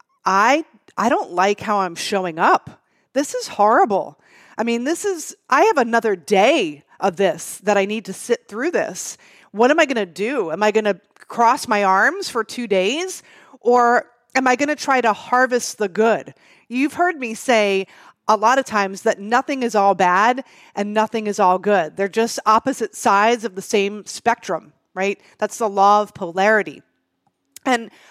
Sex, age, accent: female, 30-49, American